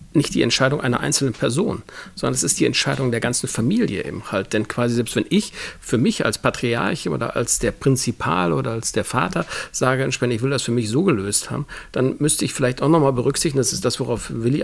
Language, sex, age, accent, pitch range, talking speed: German, male, 50-69, German, 120-140 Hz, 230 wpm